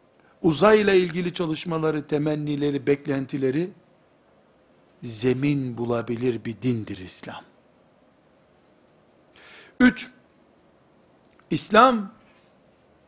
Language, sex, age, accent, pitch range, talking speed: Turkish, male, 60-79, native, 125-200 Hz, 55 wpm